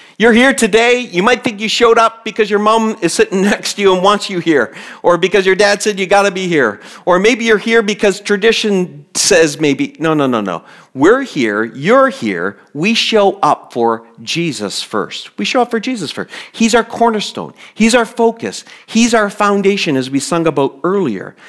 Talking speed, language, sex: 205 wpm, English, male